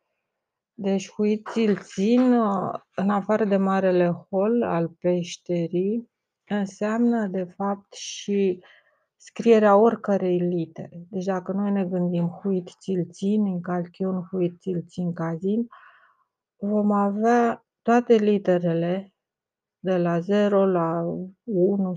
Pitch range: 180-205 Hz